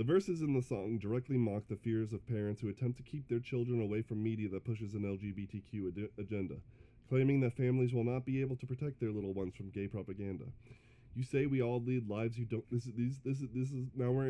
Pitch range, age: 100-125 Hz, 20-39